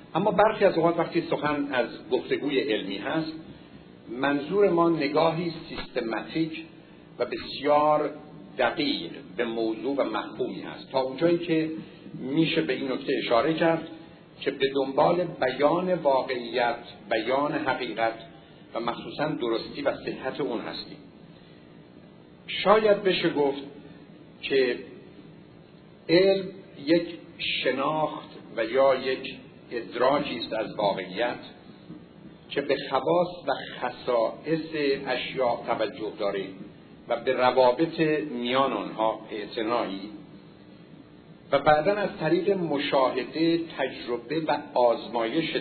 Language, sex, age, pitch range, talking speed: Persian, male, 60-79, 135-170 Hz, 105 wpm